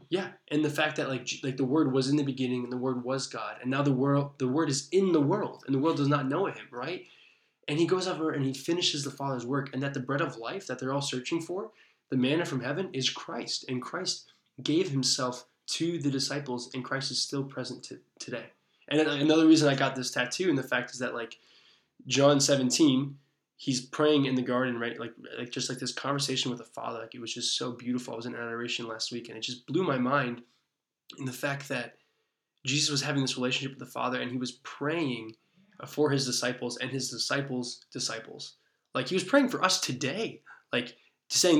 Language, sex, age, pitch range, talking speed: English, male, 20-39, 125-145 Hz, 225 wpm